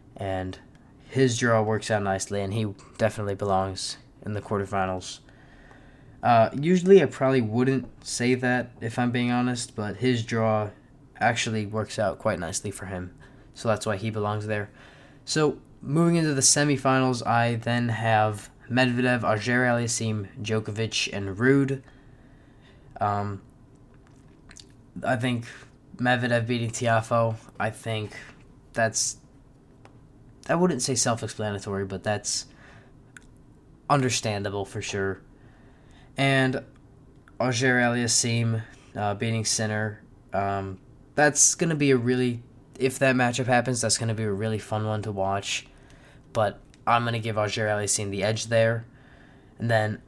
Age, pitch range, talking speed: 20-39, 110-130 Hz, 130 wpm